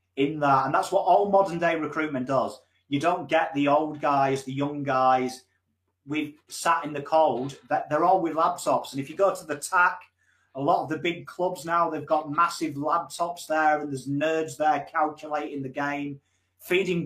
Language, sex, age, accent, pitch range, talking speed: English, male, 30-49, British, 140-185 Hz, 195 wpm